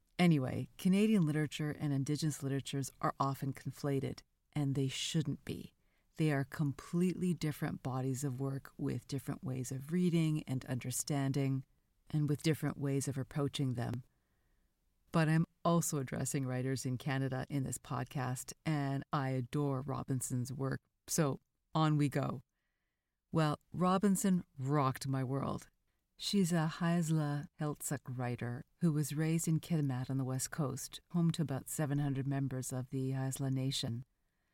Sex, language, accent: female, English, American